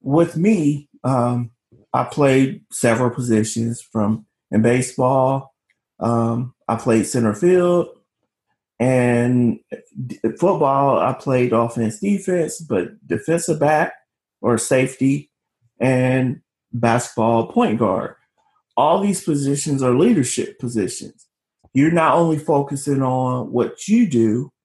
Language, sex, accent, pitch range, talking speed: English, male, American, 120-150 Hz, 110 wpm